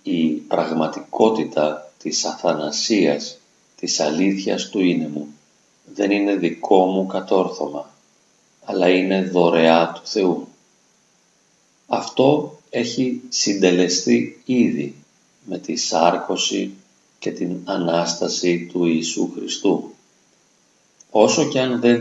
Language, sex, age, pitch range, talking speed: Greek, male, 40-59, 85-100 Hz, 95 wpm